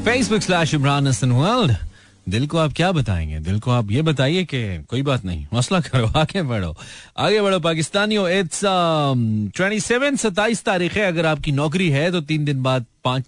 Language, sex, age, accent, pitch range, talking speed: Hindi, male, 30-49, native, 125-170 Hz, 170 wpm